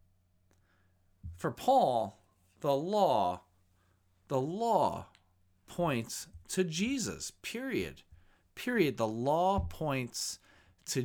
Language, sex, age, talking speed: English, male, 40-59, 80 wpm